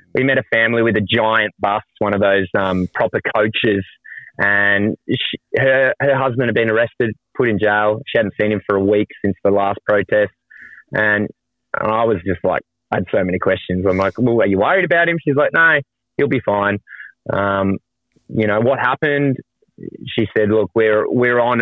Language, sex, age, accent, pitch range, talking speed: English, male, 20-39, Australian, 100-130 Hz, 200 wpm